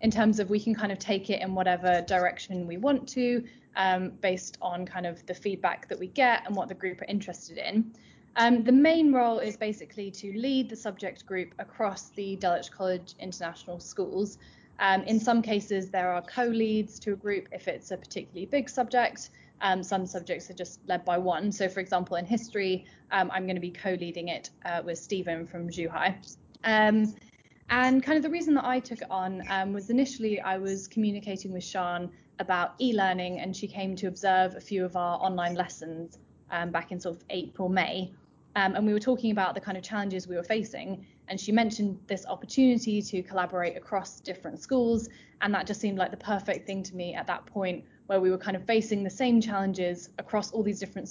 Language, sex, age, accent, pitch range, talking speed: English, female, 20-39, British, 185-215 Hz, 210 wpm